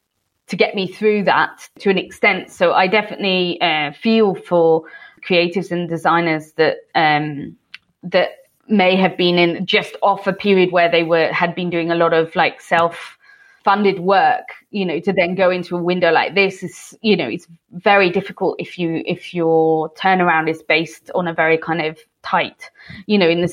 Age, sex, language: 20-39, female, English